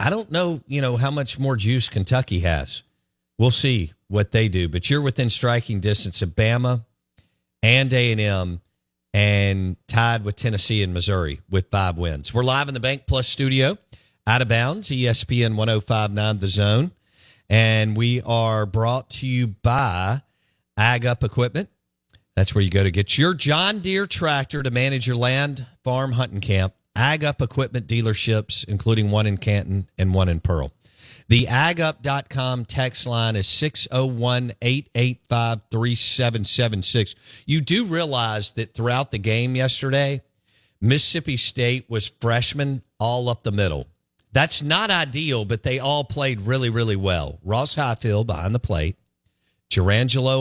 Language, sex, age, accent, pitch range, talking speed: English, male, 50-69, American, 100-130 Hz, 150 wpm